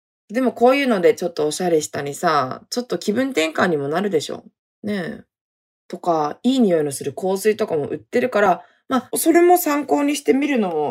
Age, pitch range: 20-39, 180-265 Hz